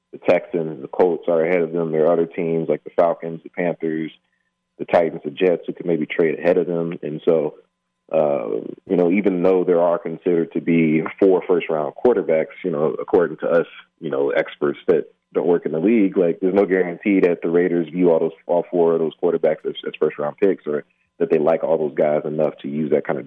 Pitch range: 80-110 Hz